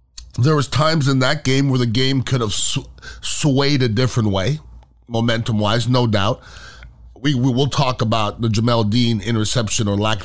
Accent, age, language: American, 30-49, English